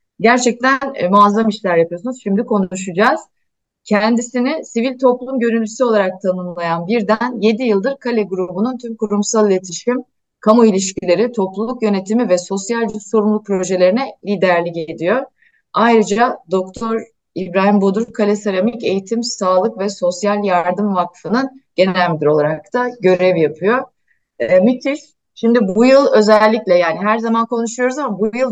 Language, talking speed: Turkish, 130 wpm